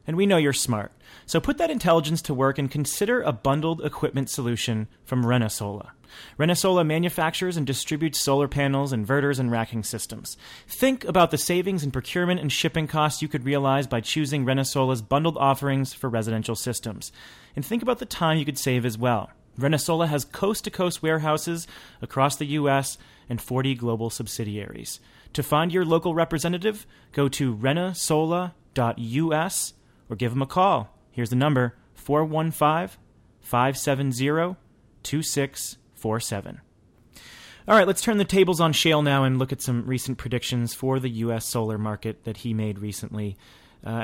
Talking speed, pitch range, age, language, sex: 155 wpm, 115-155 Hz, 30-49, English, male